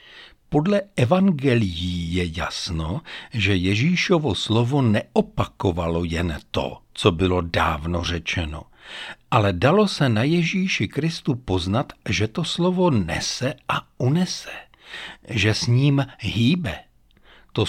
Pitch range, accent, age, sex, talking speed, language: 95-145 Hz, native, 60-79, male, 110 wpm, Czech